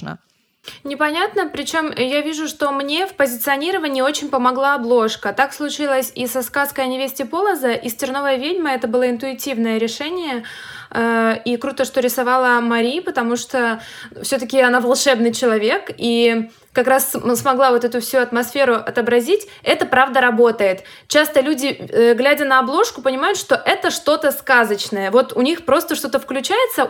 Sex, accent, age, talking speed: female, native, 20-39, 145 wpm